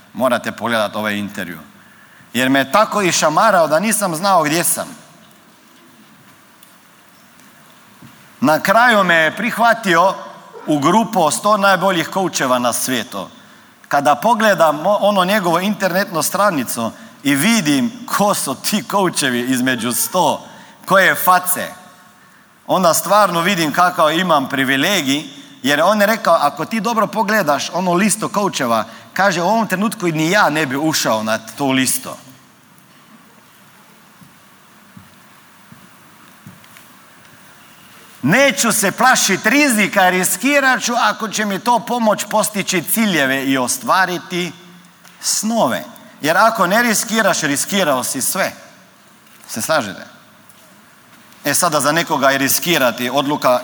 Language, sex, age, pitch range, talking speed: Croatian, male, 40-59, 140-215 Hz, 120 wpm